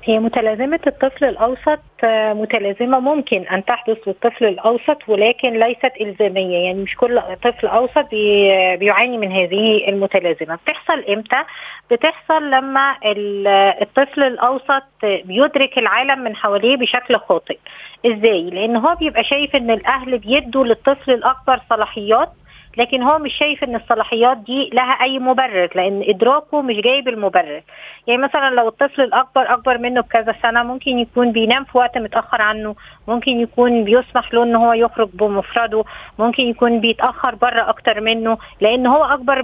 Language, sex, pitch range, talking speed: Arabic, female, 225-275 Hz, 140 wpm